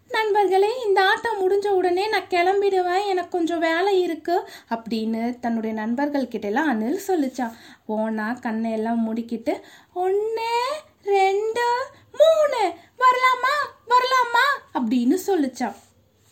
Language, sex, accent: Tamil, female, native